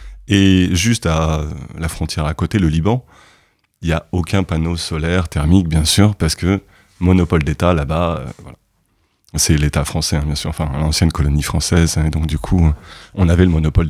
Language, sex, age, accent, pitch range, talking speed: French, male, 30-49, French, 80-100 Hz, 190 wpm